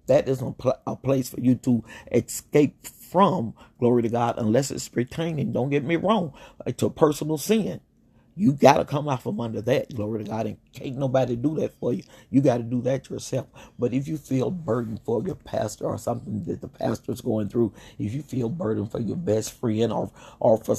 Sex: male